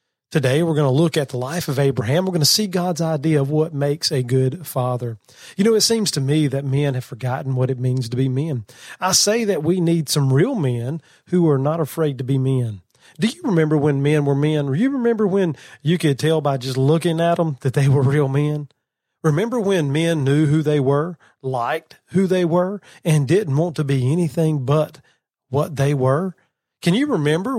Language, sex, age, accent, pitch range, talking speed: English, male, 40-59, American, 135-170 Hz, 220 wpm